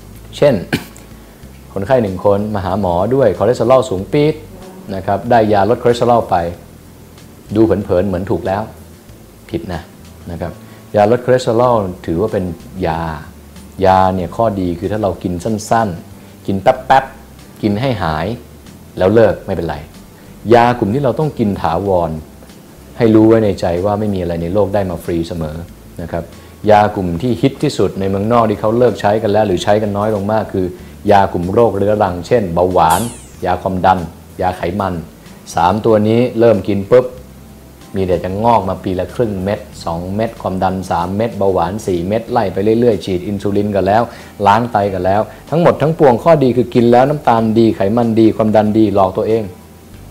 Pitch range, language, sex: 90-110 Hz, English, male